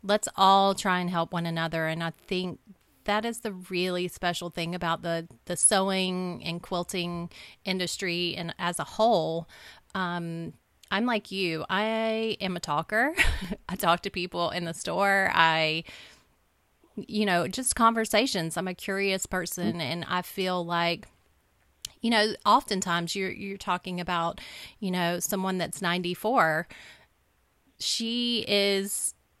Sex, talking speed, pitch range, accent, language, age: female, 145 wpm, 170-205 Hz, American, English, 30-49